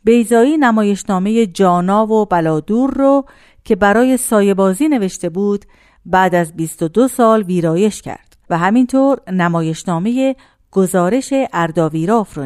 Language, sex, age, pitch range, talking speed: Persian, female, 50-69, 170-225 Hz, 110 wpm